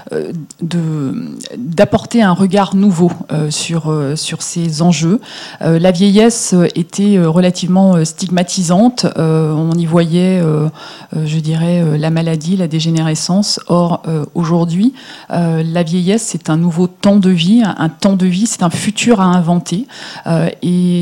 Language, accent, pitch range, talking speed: French, French, 160-200 Hz, 125 wpm